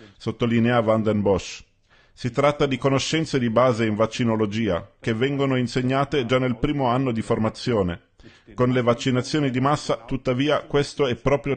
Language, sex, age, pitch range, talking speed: Italian, male, 40-59, 115-140 Hz, 155 wpm